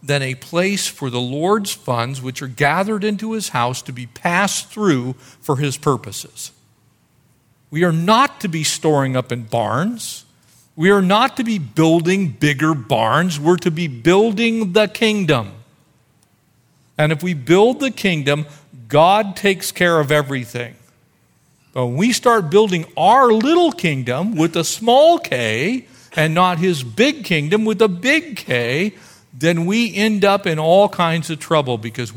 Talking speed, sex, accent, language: 160 wpm, male, American, English